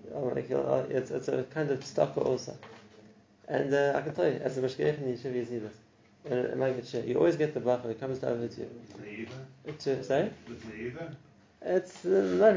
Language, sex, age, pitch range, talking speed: English, male, 30-49, 115-150 Hz, 160 wpm